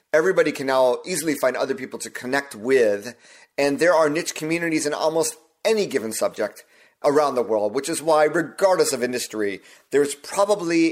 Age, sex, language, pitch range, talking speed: 30-49, male, English, 120-155 Hz, 170 wpm